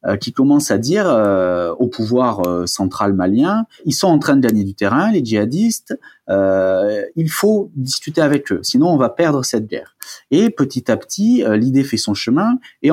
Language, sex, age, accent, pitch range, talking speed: French, male, 30-49, French, 100-135 Hz, 195 wpm